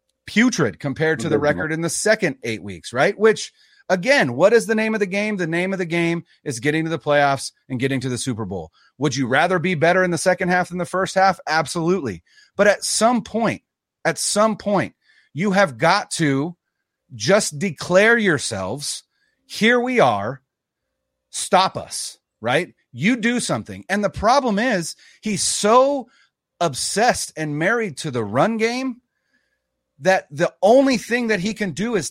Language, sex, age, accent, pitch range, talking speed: English, male, 30-49, American, 155-220 Hz, 180 wpm